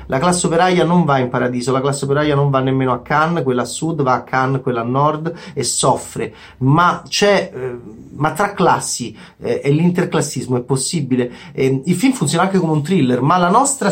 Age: 30-49